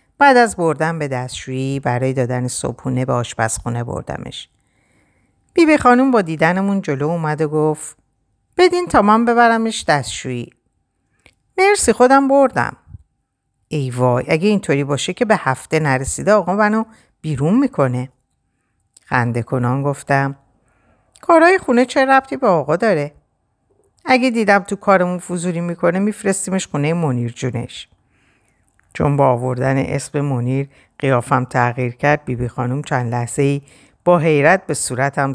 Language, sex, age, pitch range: Persian, female, 50-69, 125-185 Hz